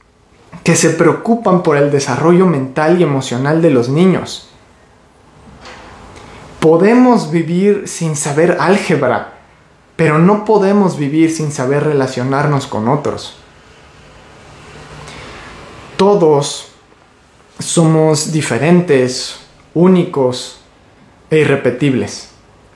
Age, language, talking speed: 30-49, Spanish, 85 wpm